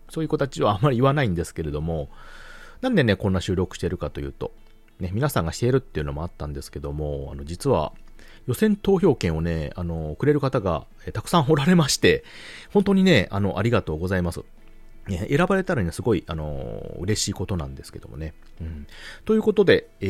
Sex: male